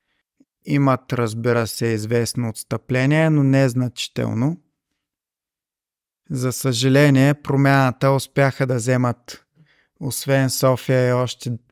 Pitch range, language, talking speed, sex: 120-135 Hz, Bulgarian, 85 wpm, male